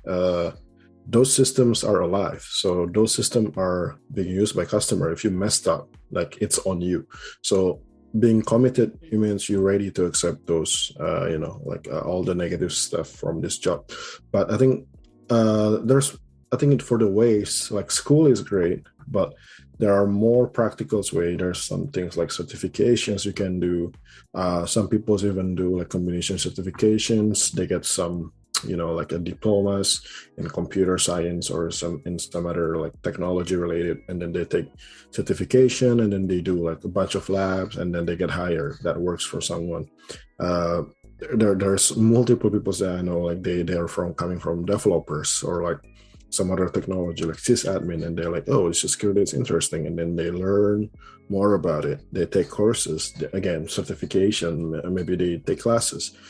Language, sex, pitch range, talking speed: English, male, 85-105 Hz, 180 wpm